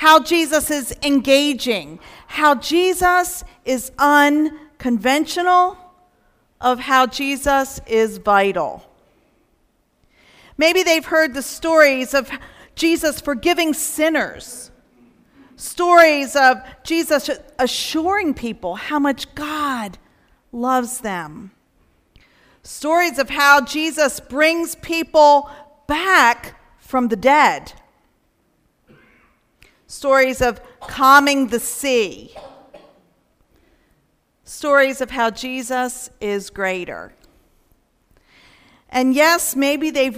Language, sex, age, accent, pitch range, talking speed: English, female, 40-59, American, 240-295 Hz, 85 wpm